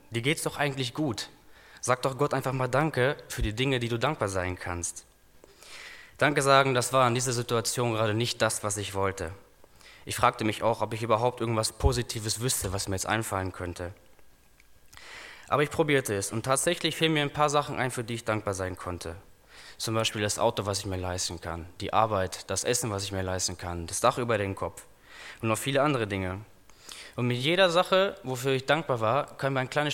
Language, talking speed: German, 210 wpm